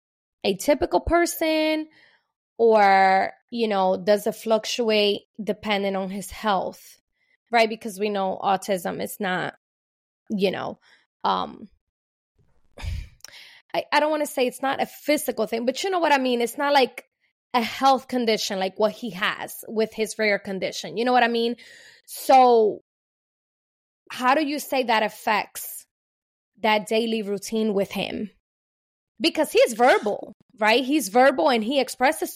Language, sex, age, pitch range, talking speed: English, female, 20-39, 205-270 Hz, 150 wpm